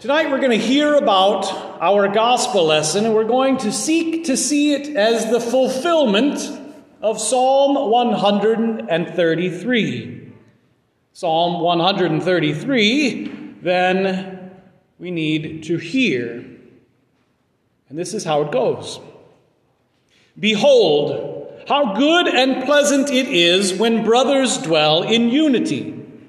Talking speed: 110 wpm